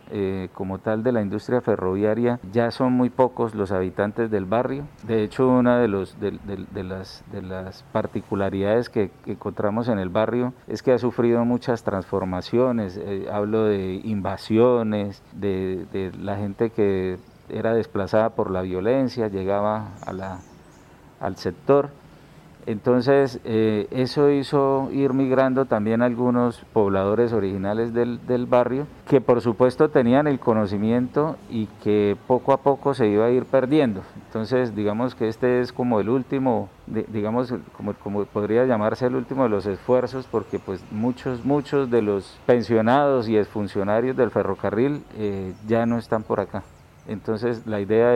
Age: 50-69